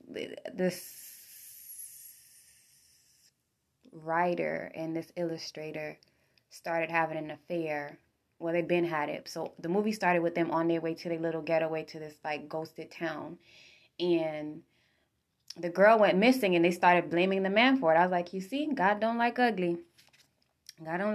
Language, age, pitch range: English, 20-39, 165-205 Hz